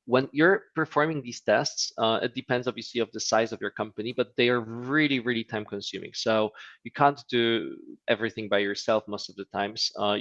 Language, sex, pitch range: English, male, 105-125 Hz